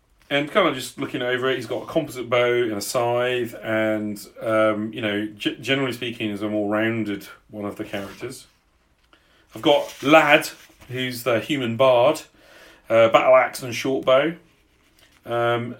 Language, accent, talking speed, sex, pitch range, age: English, British, 165 wpm, male, 105-130 Hz, 40-59